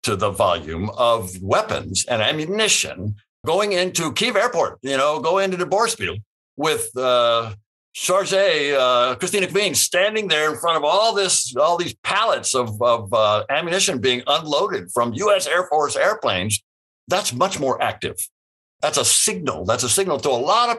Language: English